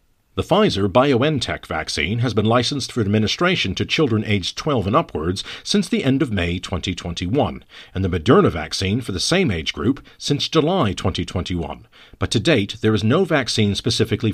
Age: 50-69